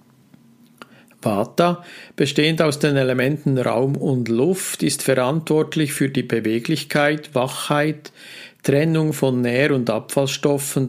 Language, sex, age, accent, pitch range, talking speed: German, male, 50-69, Austrian, 125-155 Hz, 105 wpm